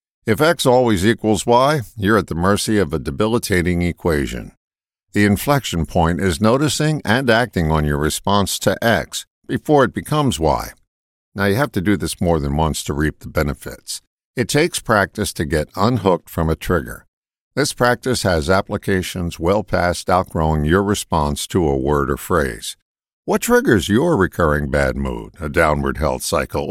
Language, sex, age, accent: English, male, 60-79, American